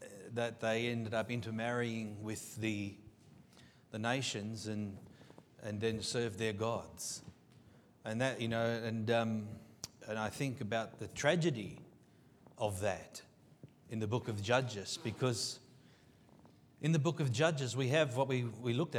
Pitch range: 115-150 Hz